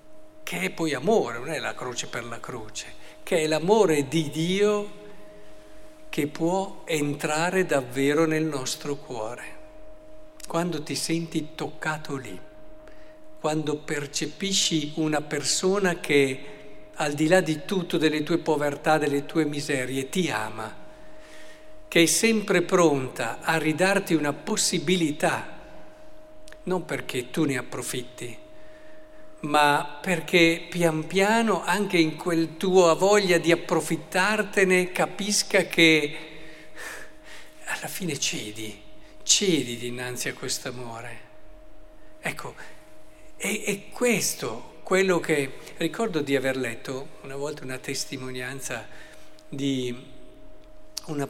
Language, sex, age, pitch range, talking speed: Italian, male, 60-79, 135-190 Hz, 110 wpm